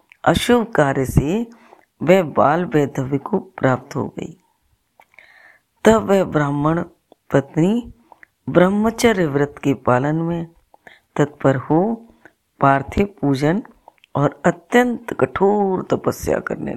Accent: native